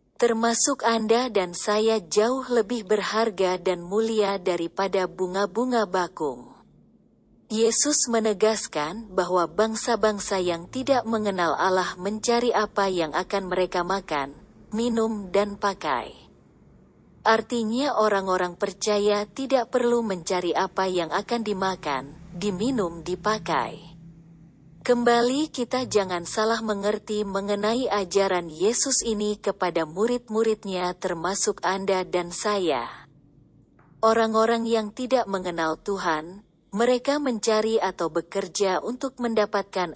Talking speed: 100 wpm